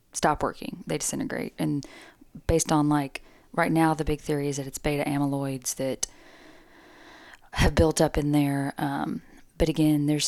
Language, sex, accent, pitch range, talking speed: English, female, American, 145-165 Hz, 165 wpm